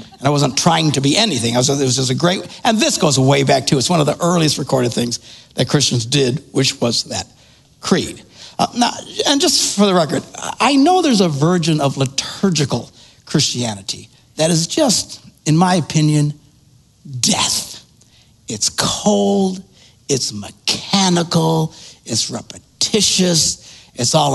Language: English